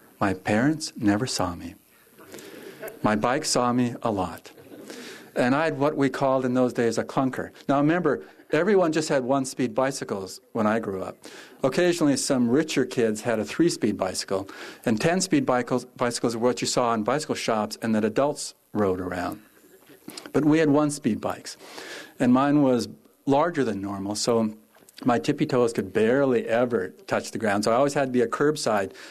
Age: 50-69